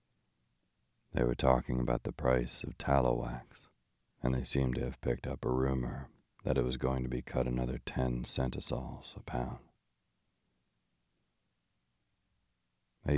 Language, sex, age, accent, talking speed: English, male, 40-59, American, 140 wpm